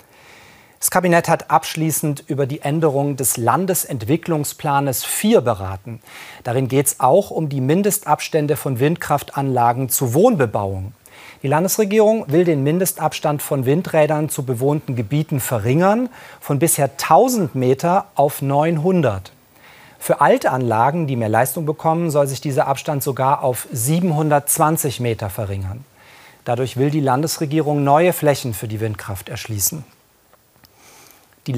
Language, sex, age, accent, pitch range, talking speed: German, male, 40-59, German, 125-155 Hz, 125 wpm